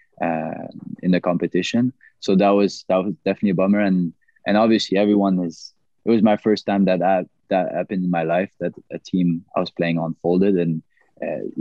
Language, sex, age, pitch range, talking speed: English, male, 20-39, 90-100 Hz, 195 wpm